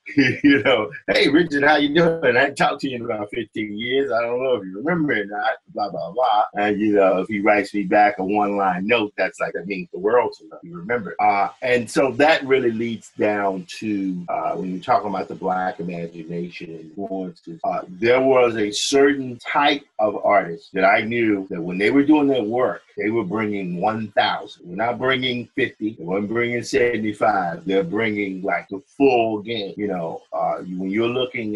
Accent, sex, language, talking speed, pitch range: American, male, English, 210 wpm, 95-120 Hz